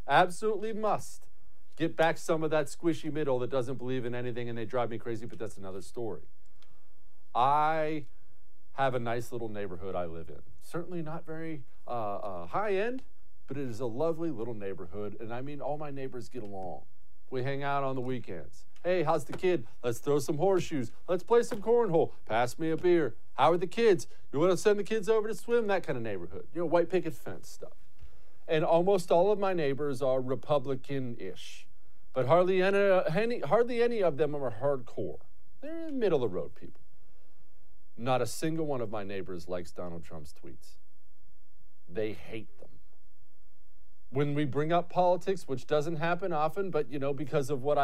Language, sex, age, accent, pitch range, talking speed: English, male, 50-69, American, 125-175 Hz, 185 wpm